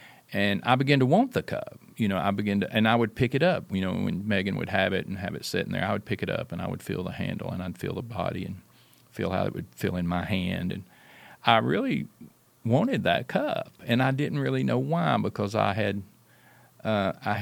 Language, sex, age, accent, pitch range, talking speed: English, male, 40-59, American, 100-125 Hz, 245 wpm